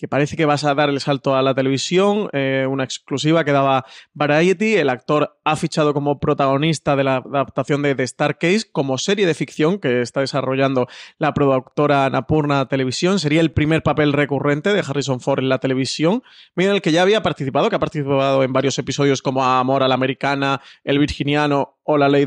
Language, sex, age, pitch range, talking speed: Spanish, male, 30-49, 135-160 Hz, 200 wpm